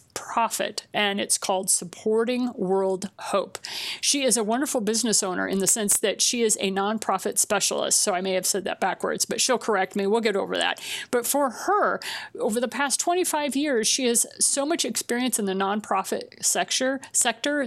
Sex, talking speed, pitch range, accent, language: female, 185 wpm, 200-250 Hz, American, English